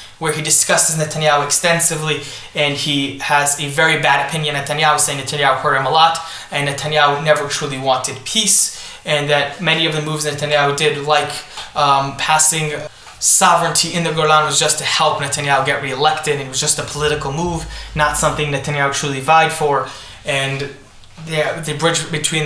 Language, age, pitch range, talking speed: English, 20-39, 145-160 Hz, 170 wpm